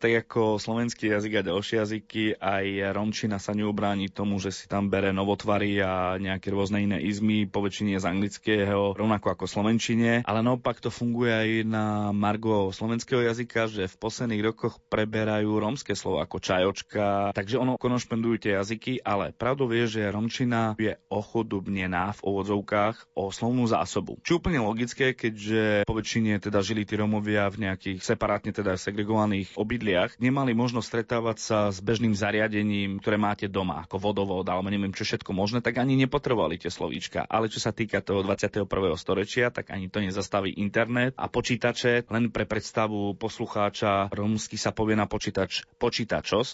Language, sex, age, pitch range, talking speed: Slovak, male, 20-39, 100-115 Hz, 160 wpm